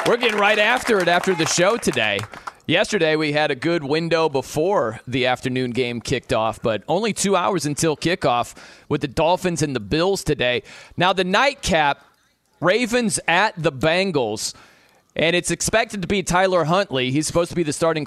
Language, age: English, 30-49